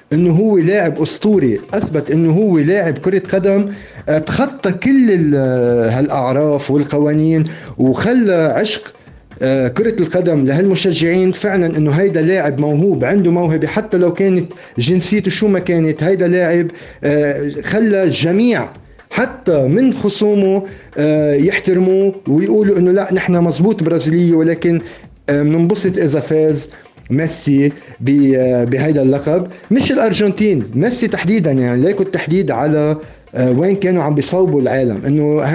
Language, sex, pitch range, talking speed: Arabic, male, 145-190 Hz, 115 wpm